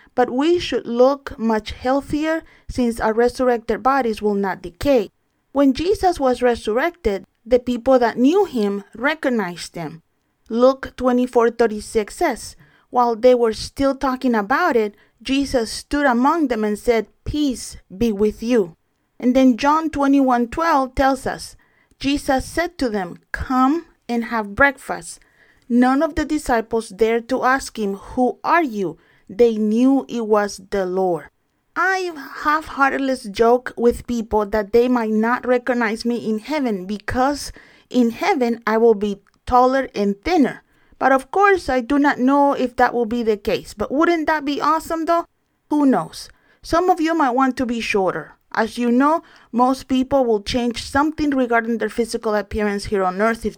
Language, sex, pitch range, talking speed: English, female, 225-280 Hz, 160 wpm